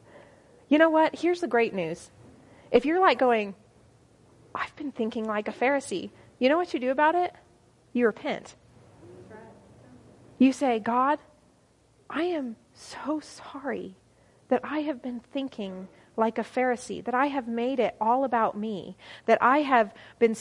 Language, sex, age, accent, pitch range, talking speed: English, female, 30-49, American, 190-255 Hz, 155 wpm